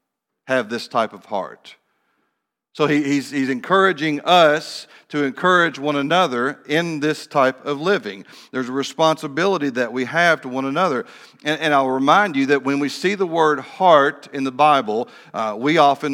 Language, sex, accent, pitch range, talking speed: English, male, American, 130-155 Hz, 175 wpm